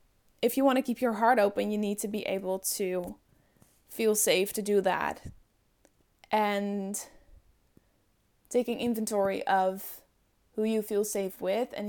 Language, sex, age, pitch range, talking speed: English, female, 10-29, 190-220 Hz, 145 wpm